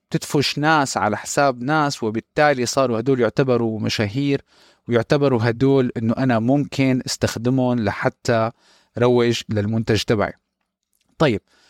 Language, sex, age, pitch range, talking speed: Arabic, male, 30-49, 115-140 Hz, 110 wpm